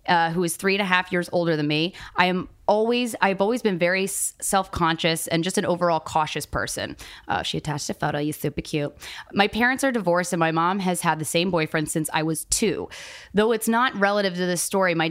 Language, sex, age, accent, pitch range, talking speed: English, female, 20-39, American, 160-195 Hz, 235 wpm